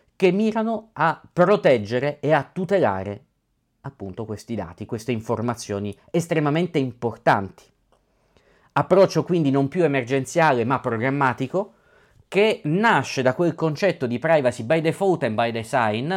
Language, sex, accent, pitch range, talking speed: Italian, male, native, 110-170 Hz, 125 wpm